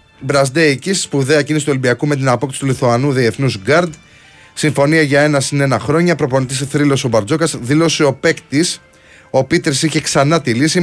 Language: Greek